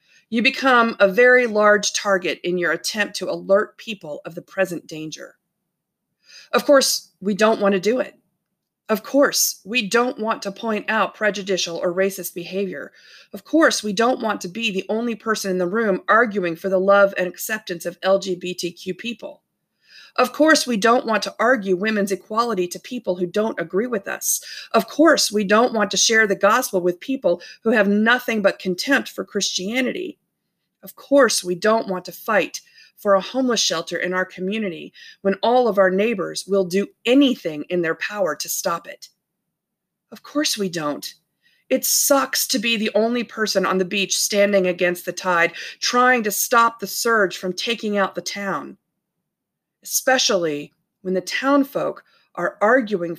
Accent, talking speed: American, 175 wpm